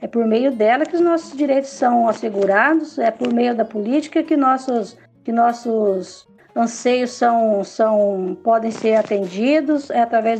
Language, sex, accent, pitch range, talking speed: Portuguese, female, Brazilian, 220-275 Hz, 140 wpm